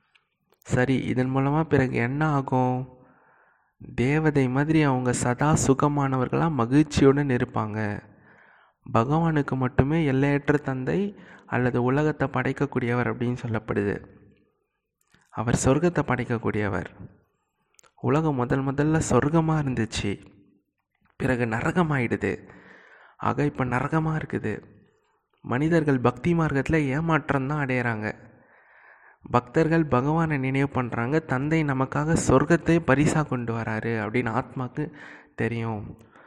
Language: Tamil